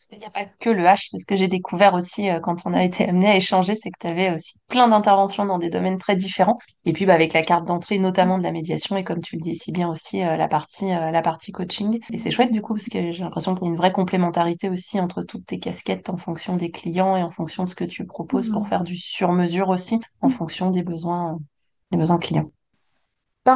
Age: 20-39